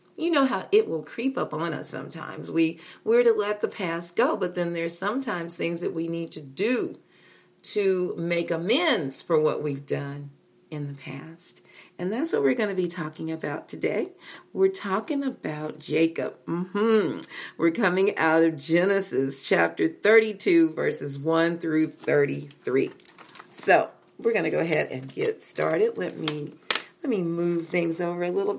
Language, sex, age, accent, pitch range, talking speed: English, female, 40-59, American, 160-210 Hz, 170 wpm